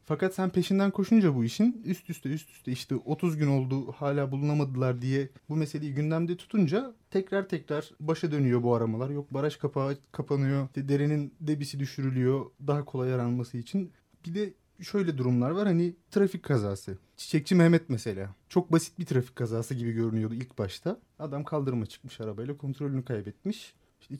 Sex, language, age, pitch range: male, Turkish, 30-49, 125-175 Hz